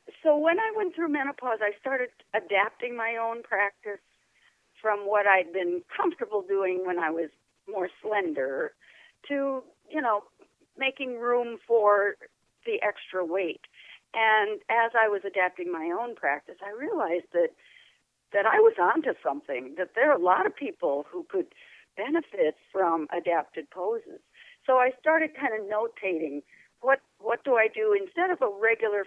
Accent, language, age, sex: American, English, 50-69, female